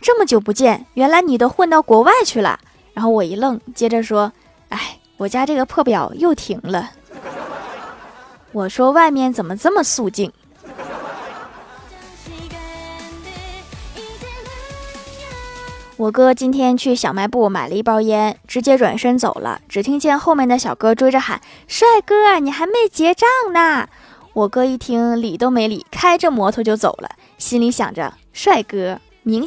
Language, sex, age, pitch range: Chinese, female, 20-39, 215-280 Hz